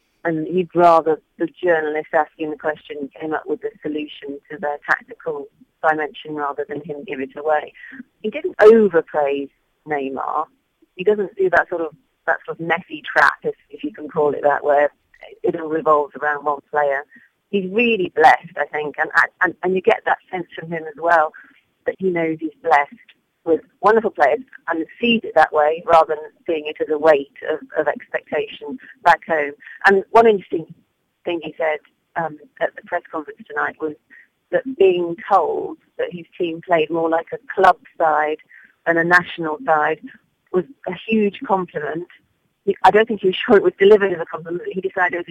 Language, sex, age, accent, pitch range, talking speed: English, female, 40-59, British, 155-195 Hz, 190 wpm